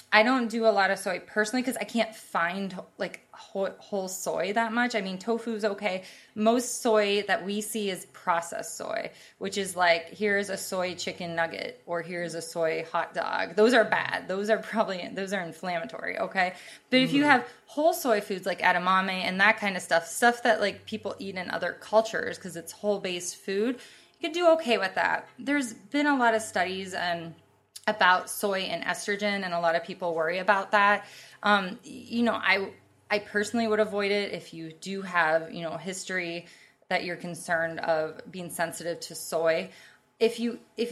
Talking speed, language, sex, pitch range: 195 wpm, English, female, 180-220 Hz